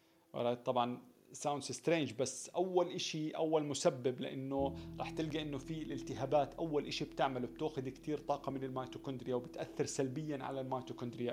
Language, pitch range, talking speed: Arabic, 125-155 Hz, 145 wpm